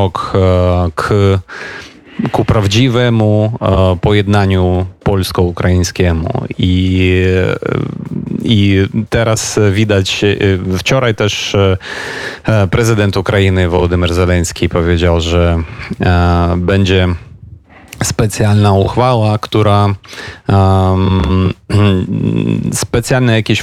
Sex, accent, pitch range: male, native, 90-105 Hz